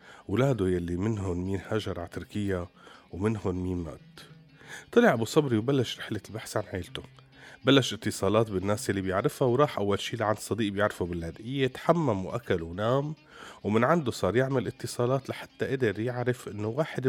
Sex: male